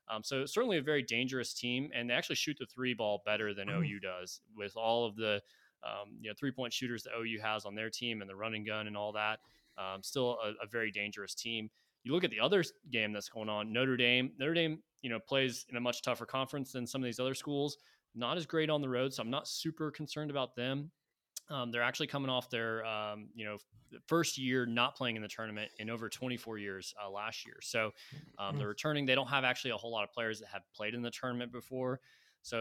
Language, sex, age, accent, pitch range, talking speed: English, male, 20-39, American, 105-130 Hz, 245 wpm